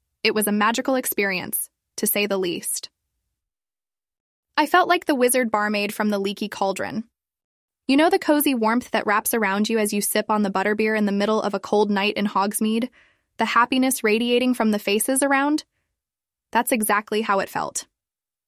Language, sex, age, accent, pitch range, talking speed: English, female, 10-29, American, 205-255 Hz, 180 wpm